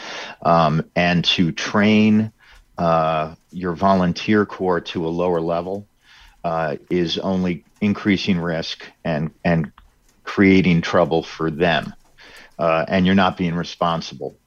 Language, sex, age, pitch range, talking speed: English, male, 50-69, 80-95 Hz, 120 wpm